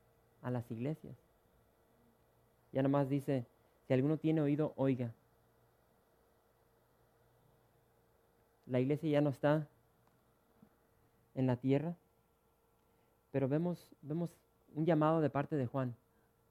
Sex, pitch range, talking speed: male, 125-155 Hz, 100 wpm